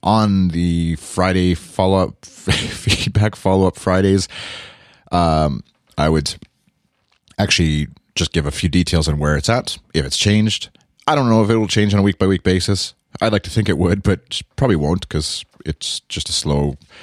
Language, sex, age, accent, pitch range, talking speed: English, male, 30-49, American, 80-105 Hz, 170 wpm